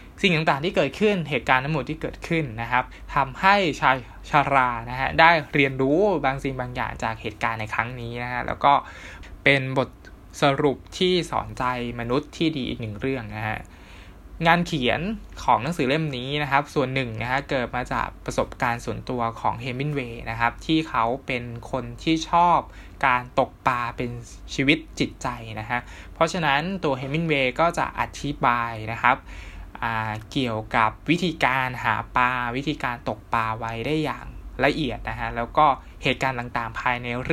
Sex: male